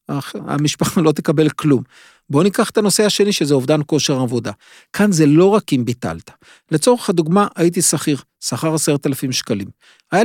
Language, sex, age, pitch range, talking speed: Hebrew, male, 50-69, 140-195 Hz, 165 wpm